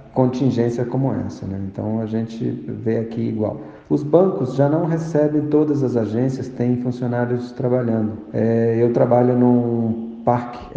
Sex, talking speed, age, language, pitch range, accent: male, 145 wpm, 50-69, Portuguese, 115-130 Hz, Brazilian